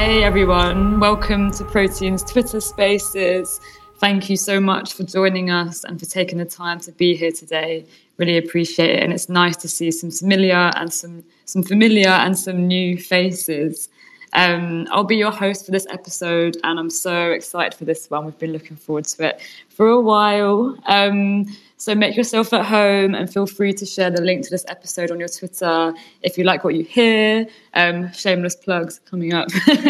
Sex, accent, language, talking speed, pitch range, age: female, British, English, 190 wpm, 165-190 Hz, 20-39